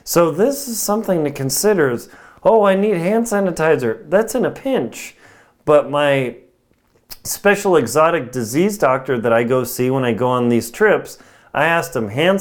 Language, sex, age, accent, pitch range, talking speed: English, male, 30-49, American, 135-195 Hz, 170 wpm